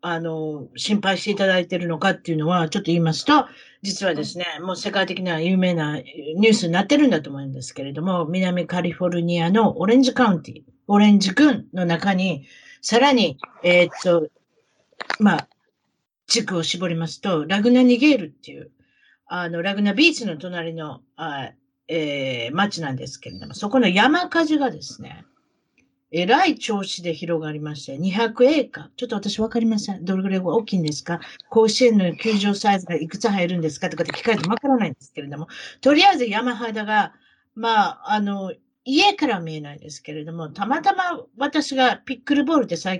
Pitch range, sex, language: 165-230 Hz, female, Japanese